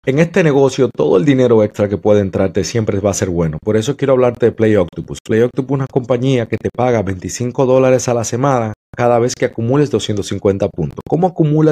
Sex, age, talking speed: male, 30-49, 220 wpm